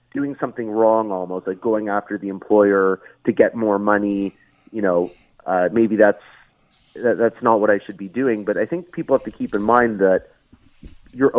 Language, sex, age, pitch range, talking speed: English, male, 30-49, 105-130 Hz, 195 wpm